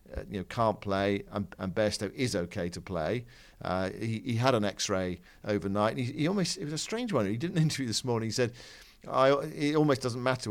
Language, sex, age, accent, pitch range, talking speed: English, male, 50-69, British, 100-115 Hz, 225 wpm